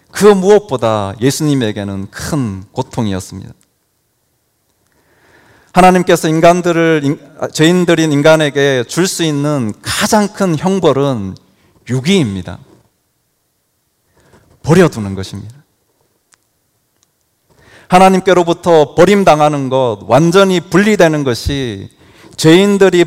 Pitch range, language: 115-175 Hz, Korean